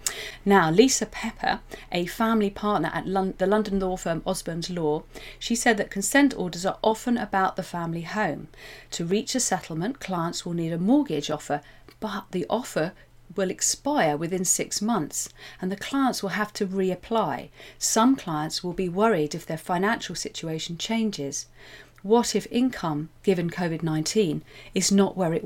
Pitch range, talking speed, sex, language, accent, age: 160-215 Hz, 160 wpm, female, English, British, 40-59